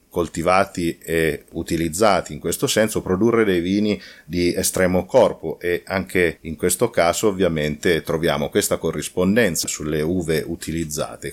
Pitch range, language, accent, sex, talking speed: 85-110 Hz, Italian, native, male, 125 wpm